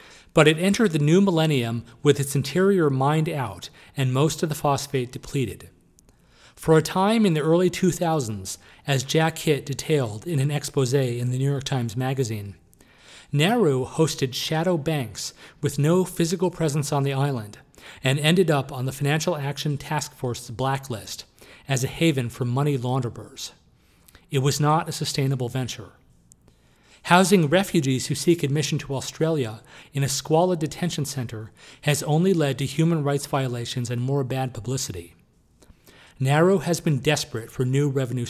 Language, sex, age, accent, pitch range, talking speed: English, male, 40-59, American, 130-160 Hz, 155 wpm